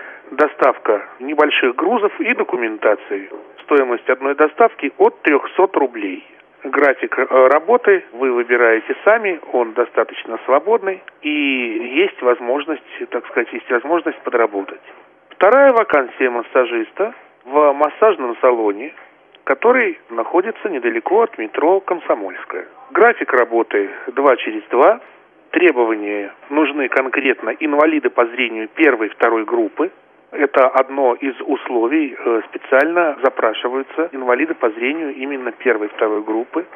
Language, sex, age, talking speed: Russian, male, 40-59, 110 wpm